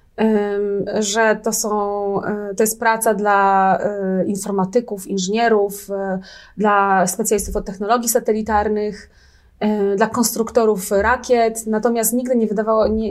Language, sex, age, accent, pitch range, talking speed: Polish, female, 30-49, native, 205-245 Hz, 100 wpm